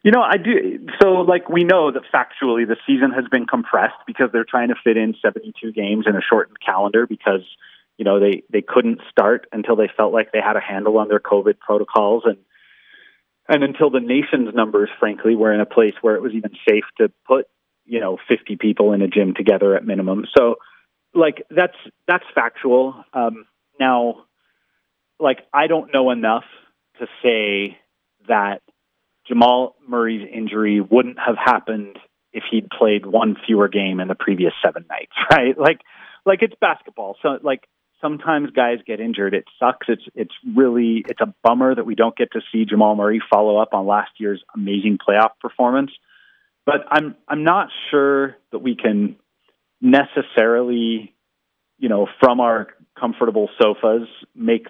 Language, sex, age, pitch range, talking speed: English, male, 30-49, 105-135 Hz, 170 wpm